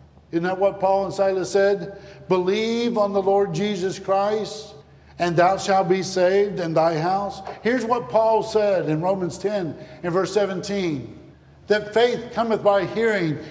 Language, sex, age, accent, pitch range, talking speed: English, male, 50-69, American, 170-215 Hz, 160 wpm